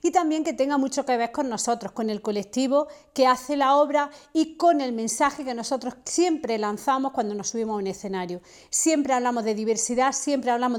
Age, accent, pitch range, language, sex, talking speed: 40-59, Spanish, 225-265 Hz, Spanish, female, 200 wpm